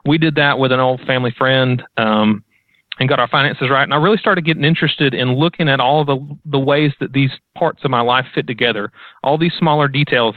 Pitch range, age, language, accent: 125-150 Hz, 30-49, English, American